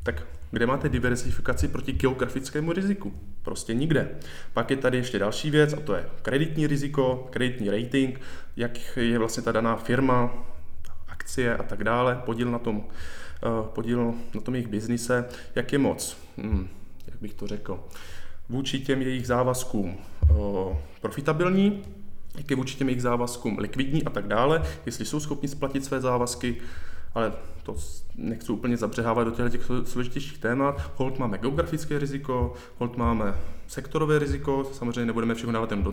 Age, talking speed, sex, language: 20-39, 150 wpm, male, Czech